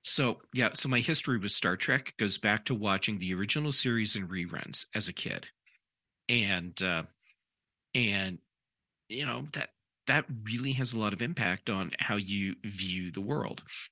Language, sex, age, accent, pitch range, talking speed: English, male, 40-59, American, 95-125 Hz, 170 wpm